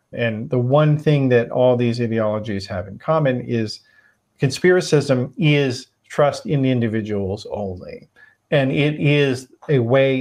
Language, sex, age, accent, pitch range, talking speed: English, male, 40-59, American, 95-135 Hz, 140 wpm